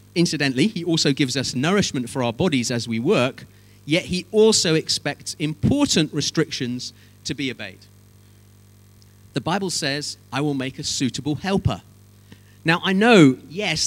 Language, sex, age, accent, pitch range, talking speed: English, male, 40-59, British, 115-180 Hz, 145 wpm